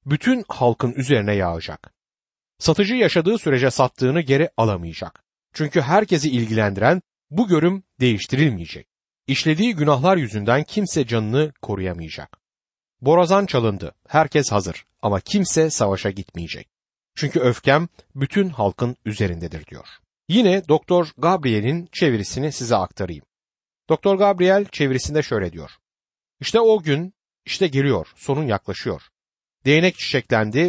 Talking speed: 110 wpm